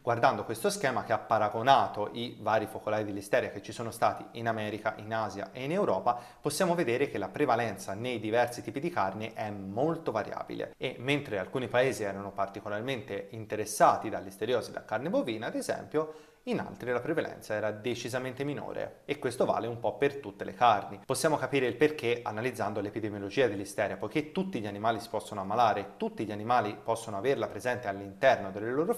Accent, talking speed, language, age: native, 180 wpm, Italian, 30-49